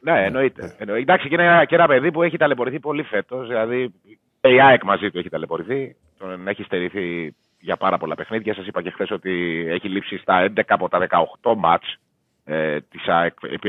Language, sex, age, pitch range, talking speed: Greek, male, 30-49, 100-140 Hz, 180 wpm